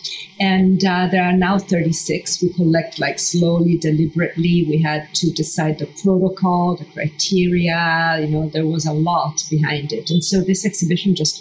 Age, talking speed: 40-59, 170 wpm